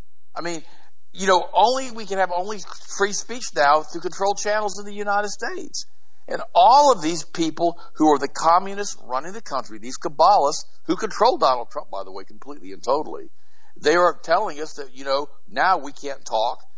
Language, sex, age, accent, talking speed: English, male, 50-69, American, 195 wpm